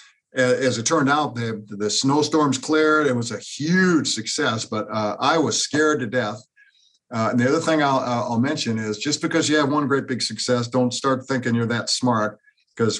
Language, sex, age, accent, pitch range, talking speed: English, male, 50-69, American, 110-140 Hz, 210 wpm